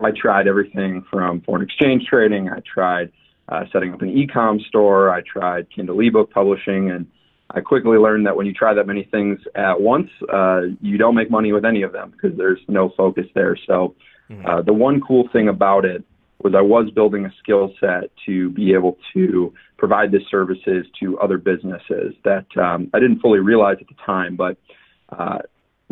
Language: English